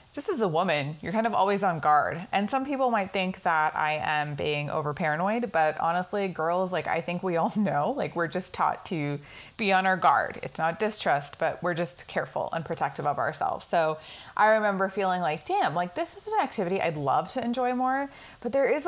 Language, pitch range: English, 155-215 Hz